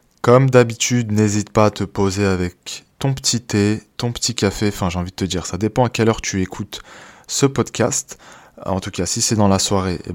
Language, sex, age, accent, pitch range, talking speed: French, male, 20-39, French, 95-120 Hz, 225 wpm